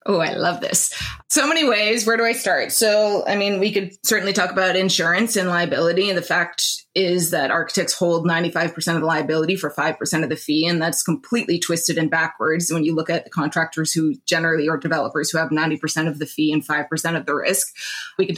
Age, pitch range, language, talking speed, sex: 20-39, 160-190 Hz, English, 220 wpm, female